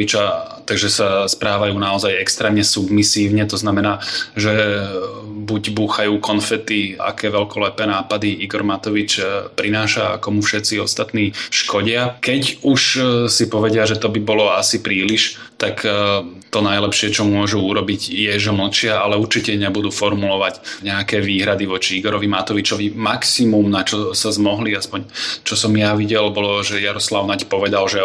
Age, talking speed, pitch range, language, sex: 20-39, 145 wpm, 100-110 Hz, Slovak, male